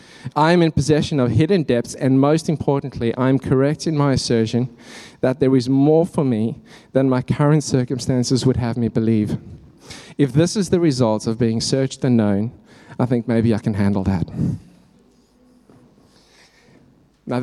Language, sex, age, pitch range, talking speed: English, male, 20-39, 130-170 Hz, 165 wpm